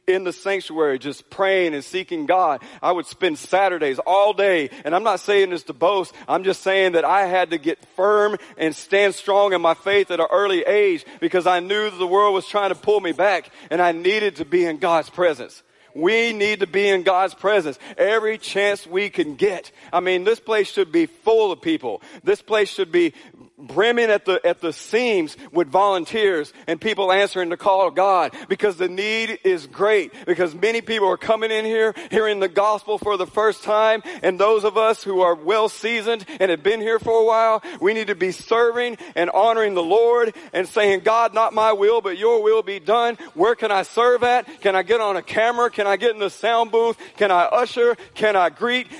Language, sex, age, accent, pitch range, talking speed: English, male, 40-59, American, 190-230 Hz, 215 wpm